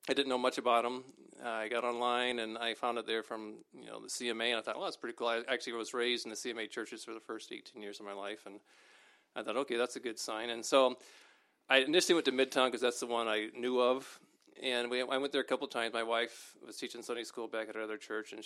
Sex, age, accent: male, 40-59, American